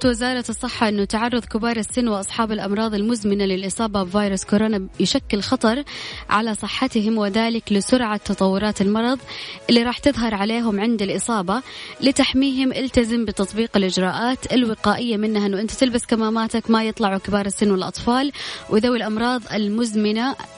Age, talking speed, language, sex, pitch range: 20-39, 130 wpm, Arabic, female, 195-245 Hz